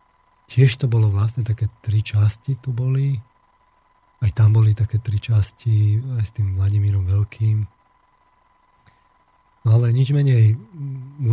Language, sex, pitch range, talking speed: Slovak, male, 105-125 Hz, 130 wpm